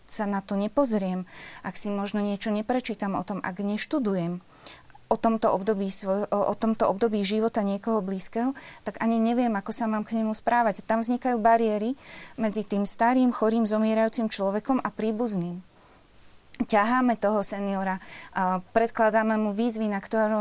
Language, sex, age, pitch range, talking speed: Slovak, female, 20-39, 200-230 Hz, 150 wpm